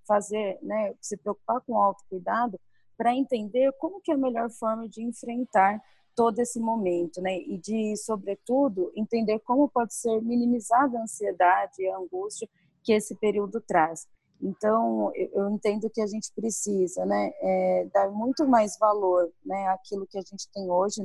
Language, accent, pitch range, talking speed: Portuguese, Brazilian, 195-230 Hz, 165 wpm